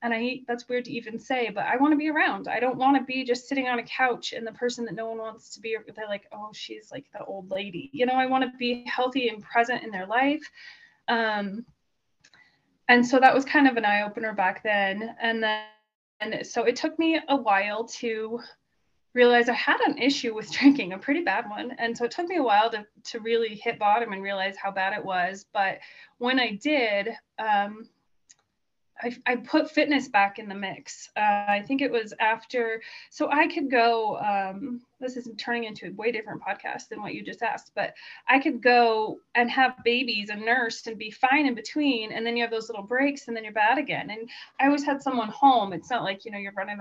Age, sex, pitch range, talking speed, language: 20-39, female, 215-260 Hz, 230 wpm, English